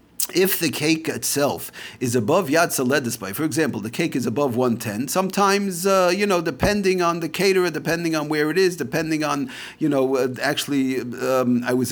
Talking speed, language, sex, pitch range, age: 190 wpm, English, male, 135-175 Hz, 40-59